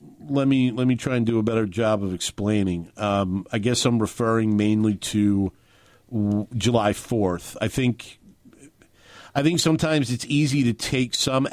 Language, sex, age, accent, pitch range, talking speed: English, male, 50-69, American, 95-110 Hz, 165 wpm